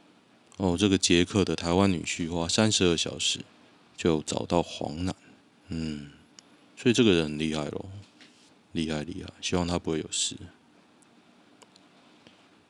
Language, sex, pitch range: Chinese, male, 80-100 Hz